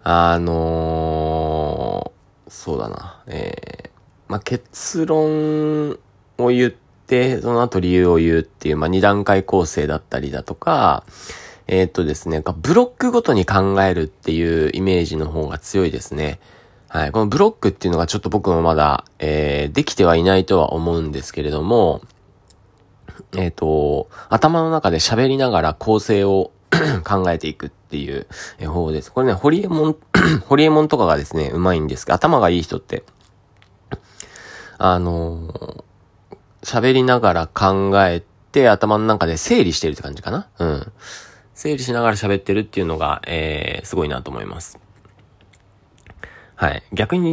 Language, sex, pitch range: Japanese, male, 80-120 Hz